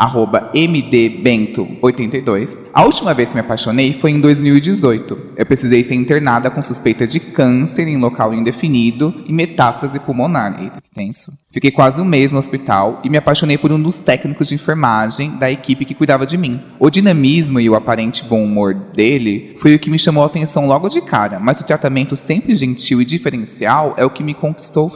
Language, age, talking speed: Portuguese, 20-39, 195 wpm